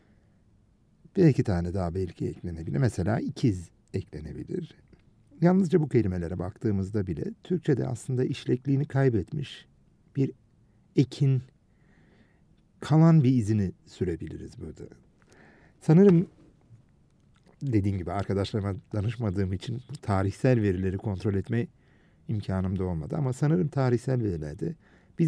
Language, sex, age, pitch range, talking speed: Turkish, male, 60-79, 95-135 Hz, 100 wpm